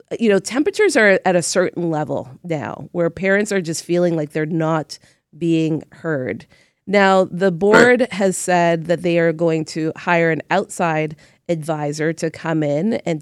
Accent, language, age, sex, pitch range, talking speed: American, English, 30-49, female, 160-200 Hz, 170 wpm